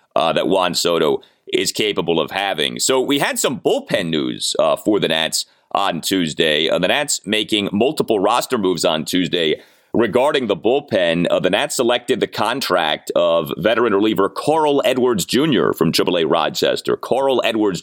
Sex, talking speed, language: male, 165 wpm, English